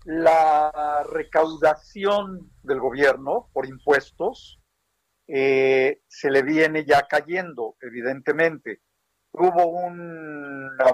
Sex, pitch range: male, 130-185 Hz